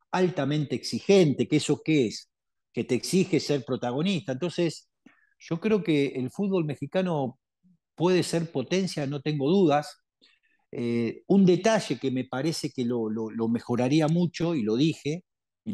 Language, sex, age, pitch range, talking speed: Spanish, male, 50-69, 130-185 Hz, 155 wpm